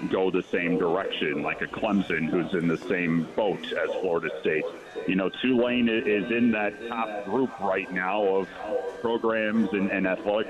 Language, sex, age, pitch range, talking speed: English, male, 40-59, 95-115 Hz, 170 wpm